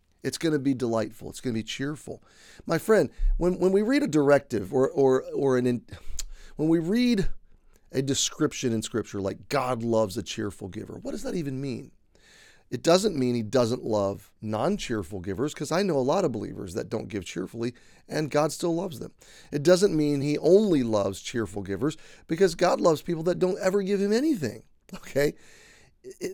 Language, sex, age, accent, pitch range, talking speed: English, male, 40-59, American, 115-175 Hz, 195 wpm